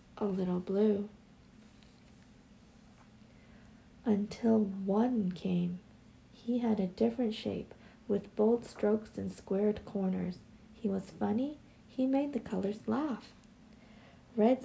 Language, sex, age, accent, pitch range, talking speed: English, female, 40-59, American, 195-235 Hz, 105 wpm